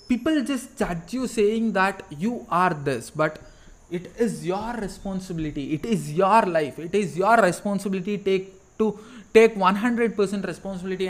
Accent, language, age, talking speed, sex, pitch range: Indian, English, 20-39, 140 wpm, male, 155-205 Hz